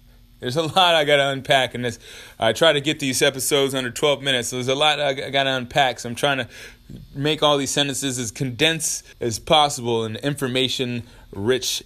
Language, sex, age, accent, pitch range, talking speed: English, male, 20-39, American, 115-140 Hz, 200 wpm